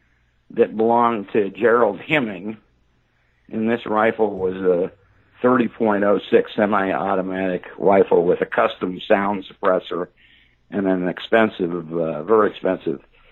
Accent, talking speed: American, 115 wpm